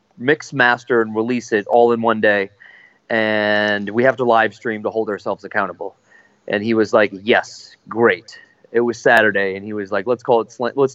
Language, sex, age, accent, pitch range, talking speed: English, male, 30-49, American, 105-130 Hz, 195 wpm